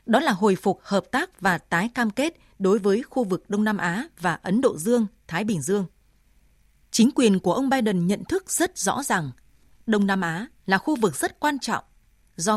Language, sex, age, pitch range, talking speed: Vietnamese, female, 20-39, 185-240 Hz, 210 wpm